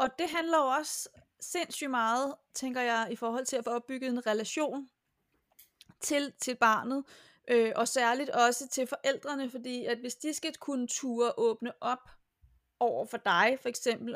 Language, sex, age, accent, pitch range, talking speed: Danish, female, 30-49, native, 235-280 Hz, 165 wpm